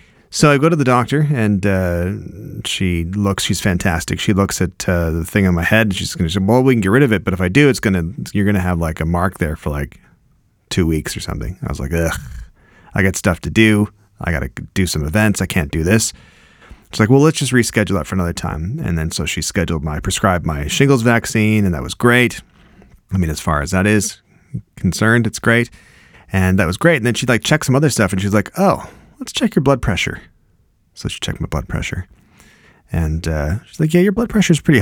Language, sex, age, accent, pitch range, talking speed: English, male, 30-49, American, 90-120 Hz, 250 wpm